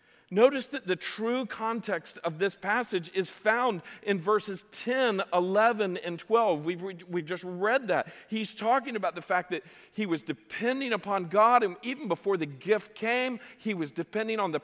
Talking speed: 175 wpm